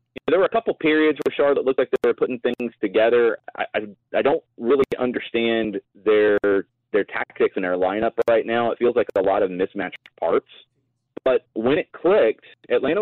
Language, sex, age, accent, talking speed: English, male, 30-49, American, 190 wpm